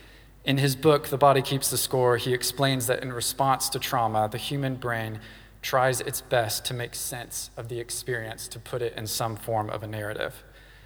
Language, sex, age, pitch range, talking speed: English, male, 20-39, 115-130 Hz, 200 wpm